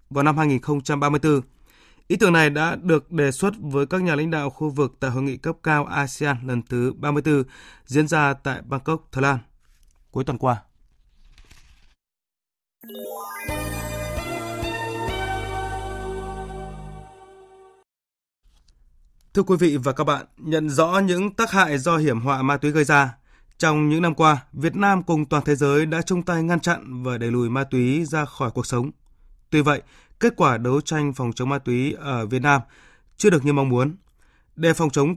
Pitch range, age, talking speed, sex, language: 125-155 Hz, 20-39, 165 wpm, male, Vietnamese